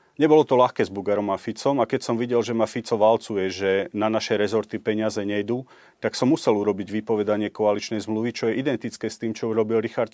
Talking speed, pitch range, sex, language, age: 215 wpm, 105-125 Hz, male, Slovak, 40-59